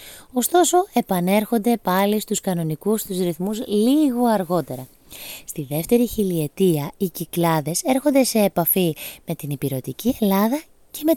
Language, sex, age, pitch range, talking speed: Greek, female, 20-39, 160-225 Hz, 125 wpm